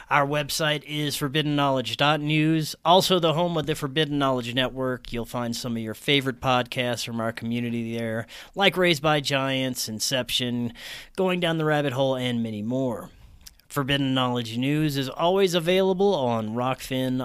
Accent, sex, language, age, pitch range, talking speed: American, male, English, 30-49, 130-165 Hz, 155 wpm